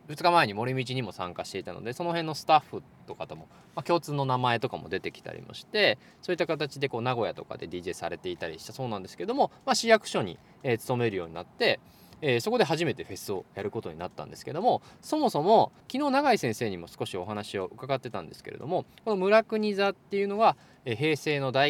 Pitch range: 120-200 Hz